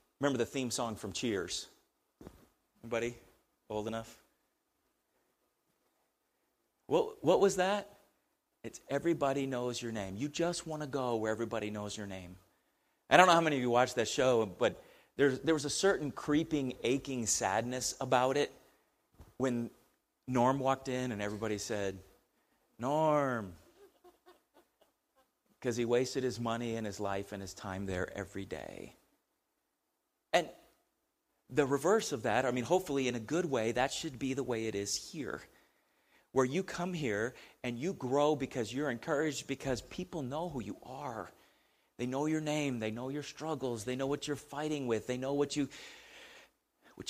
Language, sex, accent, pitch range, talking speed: English, male, American, 120-155 Hz, 160 wpm